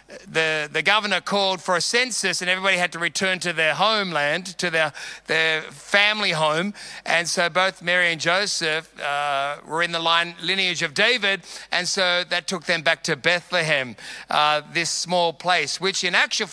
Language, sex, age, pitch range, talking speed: English, male, 40-59, 165-195 Hz, 180 wpm